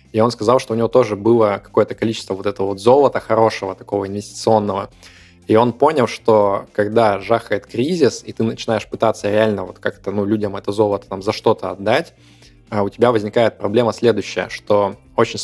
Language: Russian